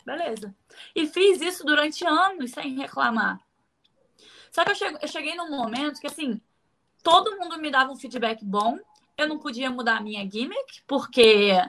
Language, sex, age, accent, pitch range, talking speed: Portuguese, female, 20-39, Brazilian, 245-360 Hz, 170 wpm